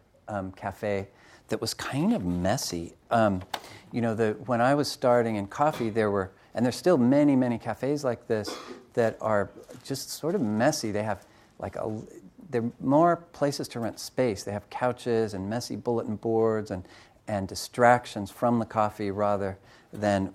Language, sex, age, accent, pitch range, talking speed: English, male, 40-59, American, 100-115 Hz, 170 wpm